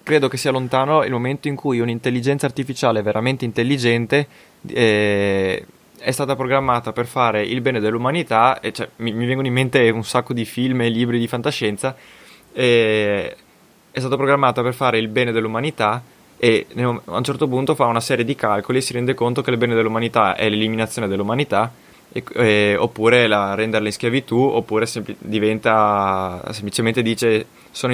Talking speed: 170 wpm